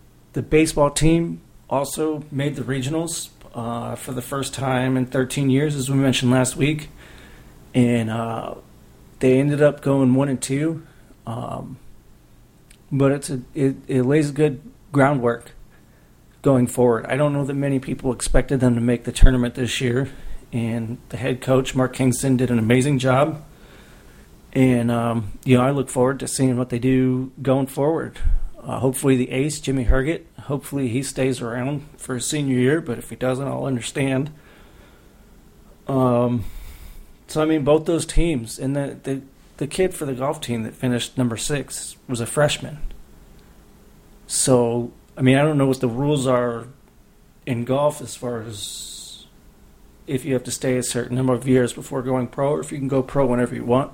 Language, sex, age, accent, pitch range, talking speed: English, male, 40-59, American, 120-140 Hz, 175 wpm